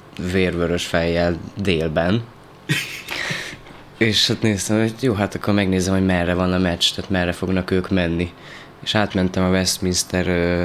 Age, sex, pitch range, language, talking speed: 20-39, male, 90-100 Hz, Hungarian, 140 wpm